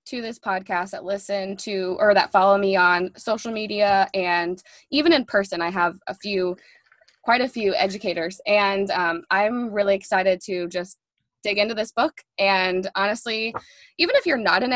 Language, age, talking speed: English, 20-39, 175 wpm